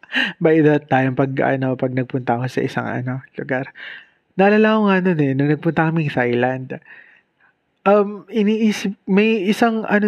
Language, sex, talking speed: Filipino, male, 145 wpm